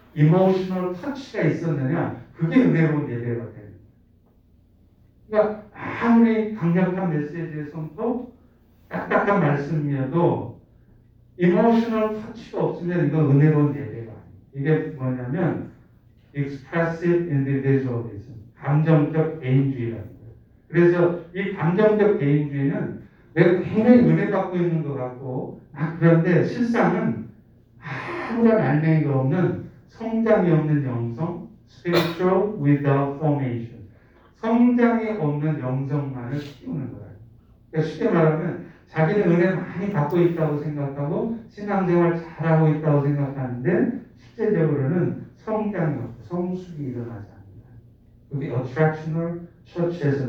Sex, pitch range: male, 130-175 Hz